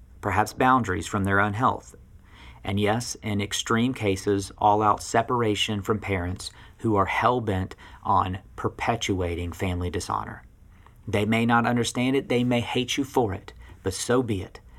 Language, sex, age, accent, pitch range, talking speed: English, male, 40-59, American, 95-120 Hz, 150 wpm